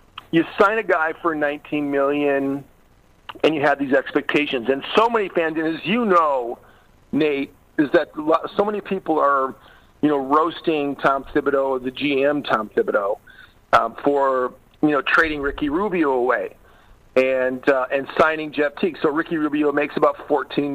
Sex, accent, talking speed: male, American, 160 wpm